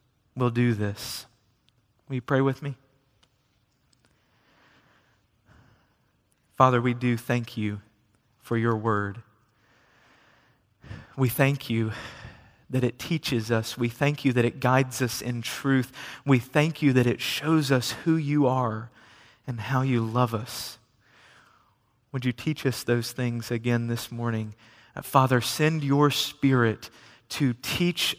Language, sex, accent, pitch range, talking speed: English, male, American, 115-140 Hz, 130 wpm